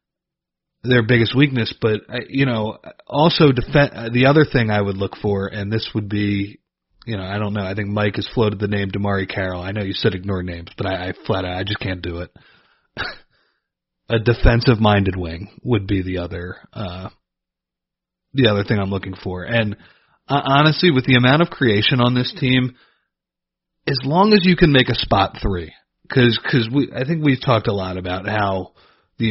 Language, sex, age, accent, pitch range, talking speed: English, male, 30-49, American, 100-125 Hz, 190 wpm